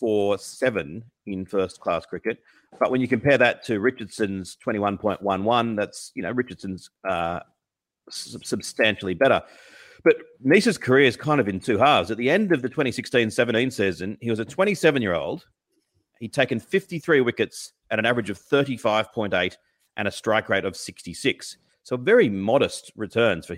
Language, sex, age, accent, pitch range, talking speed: English, male, 40-59, Australian, 100-130 Hz, 160 wpm